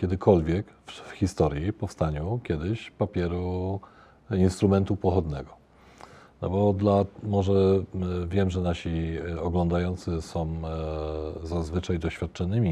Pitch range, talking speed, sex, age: 85-105 Hz, 90 wpm, male, 40-59